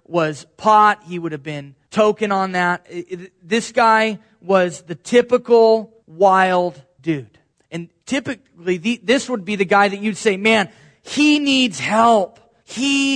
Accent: American